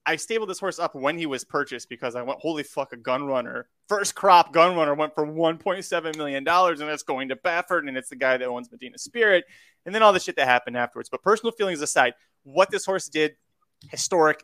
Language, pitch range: English, 130-170 Hz